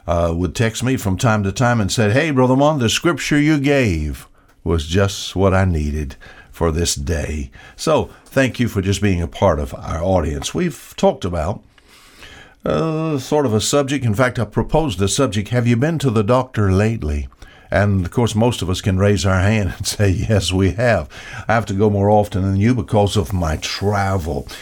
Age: 60-79